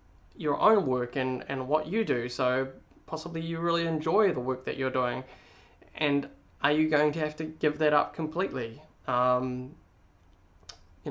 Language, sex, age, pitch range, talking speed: English, male, 20-39, 130-155 Hz, 165 wpm